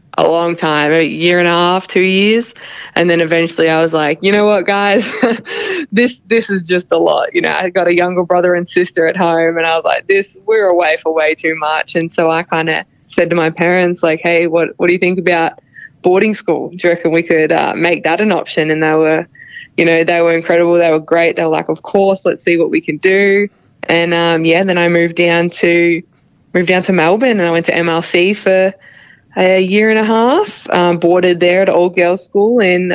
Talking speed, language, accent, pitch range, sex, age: 235 wpm, English, Australian, 165-190 Hz, female, 20-39